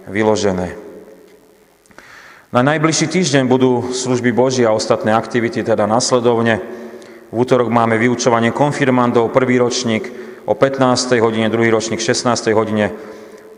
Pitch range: 110-125 Hz